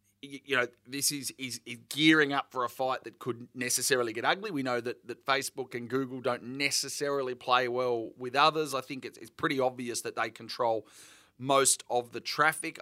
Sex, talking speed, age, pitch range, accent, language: male, 195 wpm, 30-49, 125-145 Hz, Australian, English